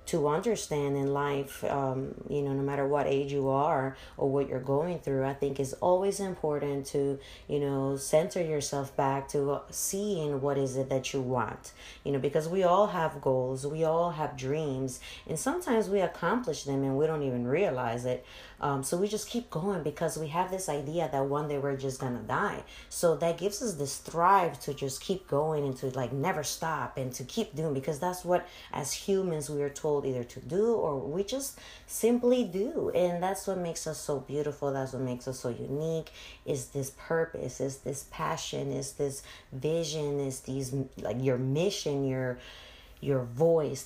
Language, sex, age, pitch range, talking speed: English, female, 20-39, 135-165 Hz, 195 wpm